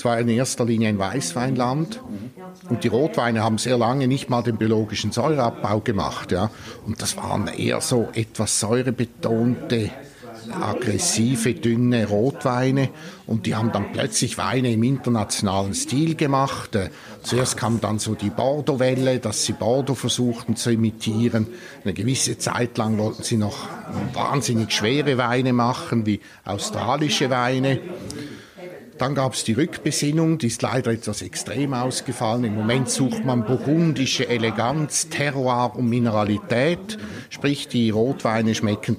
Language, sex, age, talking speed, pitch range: German, male, 50-69, 140 wpm, 110-135 Hz